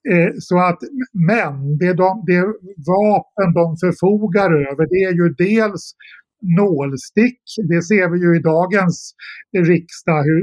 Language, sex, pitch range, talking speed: Swedish, male, 160-190 Hz, 130 wpm